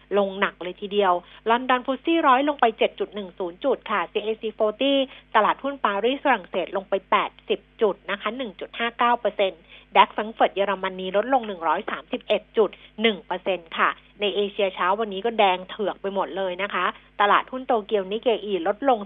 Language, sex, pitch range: Thai, female, 190-235 Hz